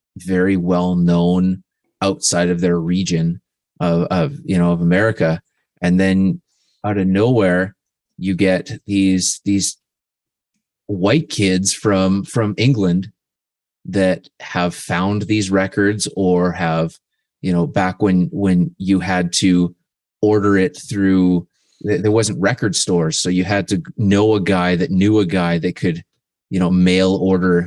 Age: 30-49